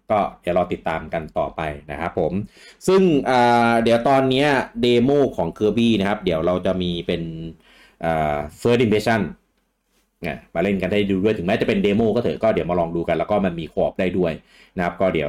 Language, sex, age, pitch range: English, male, 30-49, 85-115 Hz